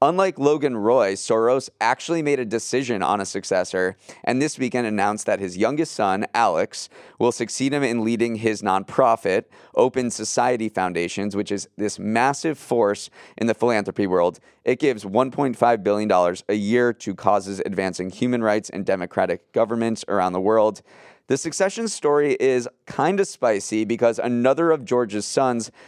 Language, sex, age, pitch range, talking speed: English, male, 30-49, 105-130 Hz, 160 wpm